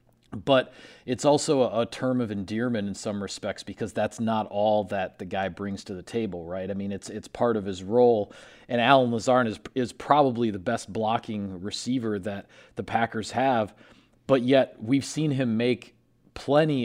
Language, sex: English, male